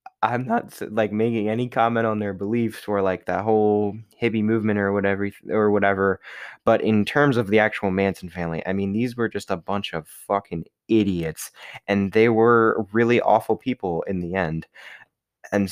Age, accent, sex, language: 20-39, American, male, English